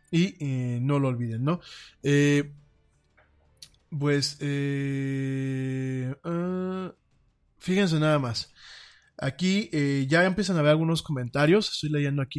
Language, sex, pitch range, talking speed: Spanish, male, 130-160 Hz, 115 wpm